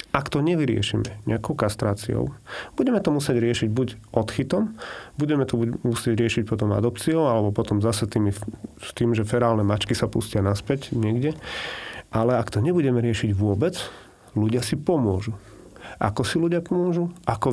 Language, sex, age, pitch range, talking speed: Slovak, male, 40-59, 105-130 Hz, 150 wpm